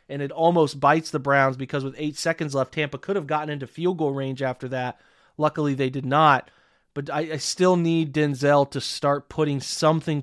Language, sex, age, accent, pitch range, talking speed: English, male, 30-49, American, 140-165 Hz, 205 wpm